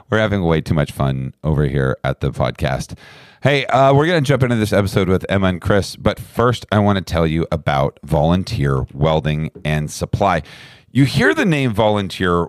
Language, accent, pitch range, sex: English, American, 90-120 Hz, male